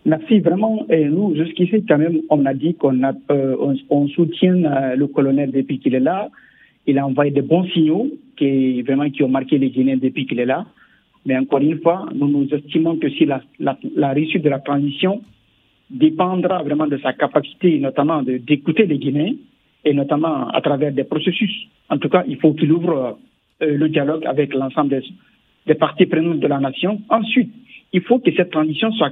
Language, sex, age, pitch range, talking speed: French, male, 50-69, 145-215 Hz, 200 wpm